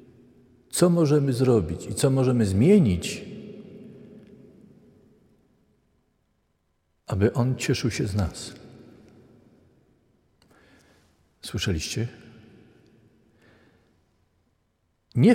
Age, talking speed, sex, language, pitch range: 50-69, 60 wpm, male, Polish, 110-150 Hz